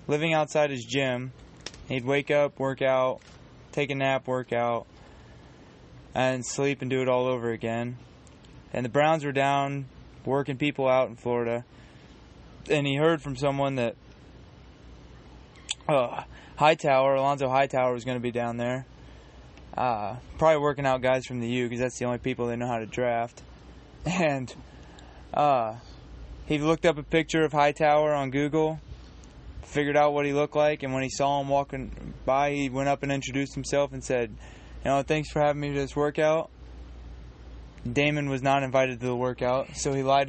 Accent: American